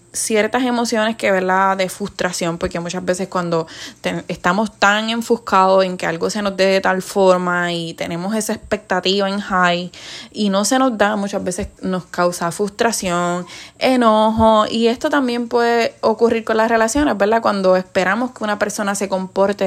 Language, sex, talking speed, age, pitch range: Spanish, female, 170 wpm, 20-39, 185-225 Hz